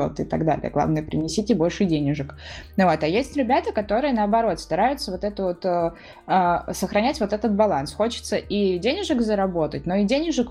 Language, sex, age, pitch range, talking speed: Russian, female, 20-39, 170-215 Hz, 170 wpm